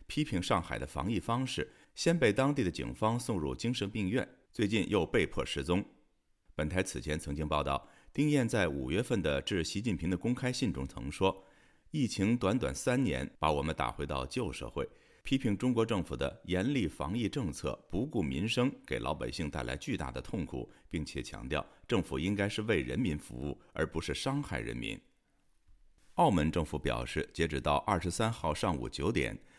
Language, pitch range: Chinese, 75-110 Hz